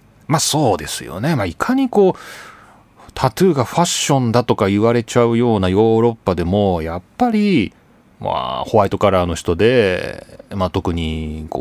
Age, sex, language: 30-49, male, Japanese